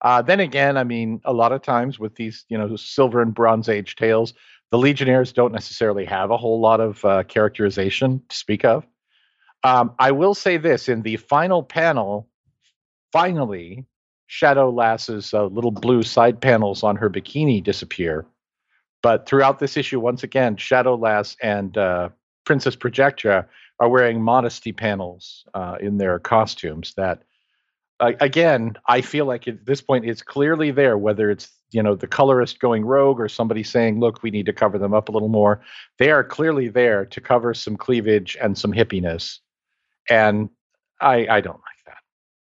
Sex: male